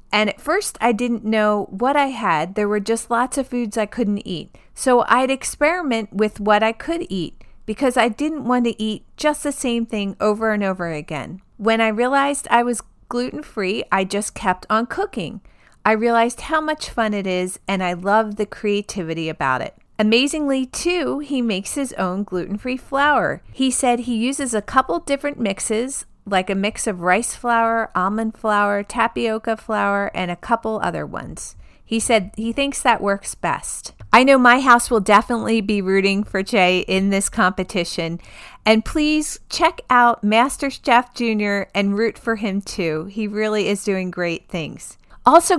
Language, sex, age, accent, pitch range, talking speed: English, female, 40-59, American, 200-245 Hz, 180 wpm